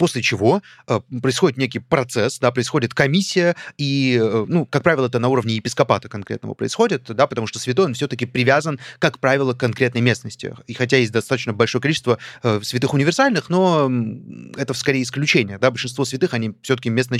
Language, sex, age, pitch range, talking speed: Russian, male, 30-49, 120-160 Hz, 175 wpm